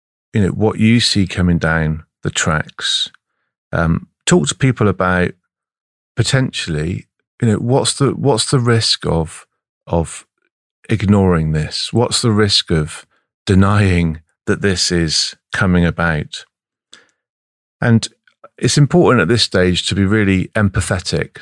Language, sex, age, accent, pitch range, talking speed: English, male, 40-59, British, 85-110 Hz, 130 wpm